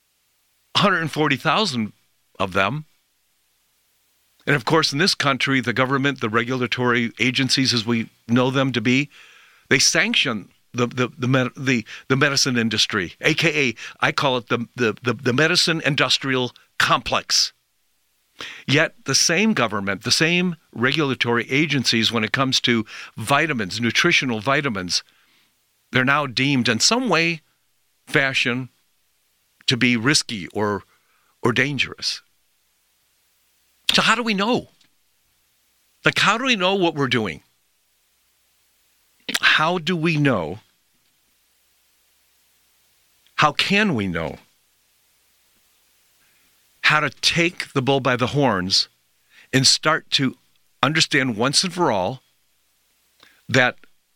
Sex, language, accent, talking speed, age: male, English, American, 115 wpm, 50-69